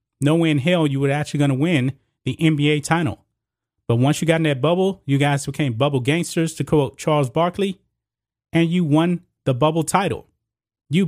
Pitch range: 120-160 Hz